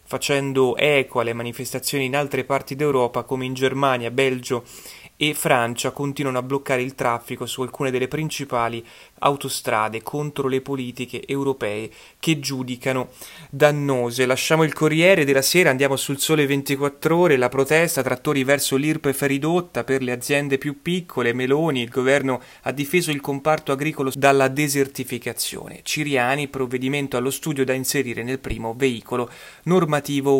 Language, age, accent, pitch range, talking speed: Italian, 30-49, native, 130-150 Hz, 140 wpm